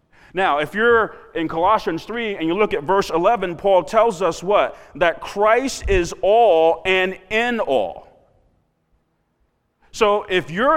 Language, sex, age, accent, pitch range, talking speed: English, male, 40-59, American, 175-225 Hz, 145 wpm